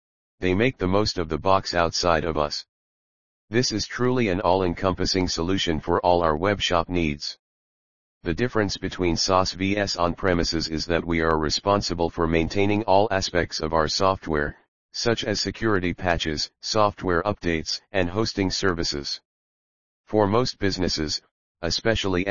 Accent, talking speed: American, 140 wpm